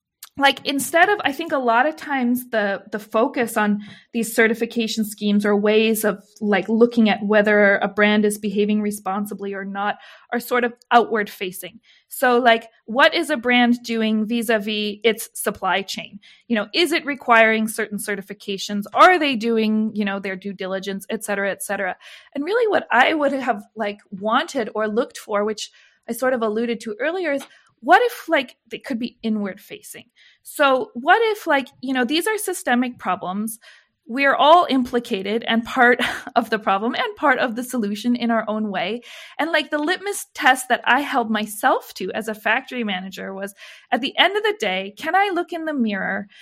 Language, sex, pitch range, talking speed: English, female, 210-275 Hz, 190 wpm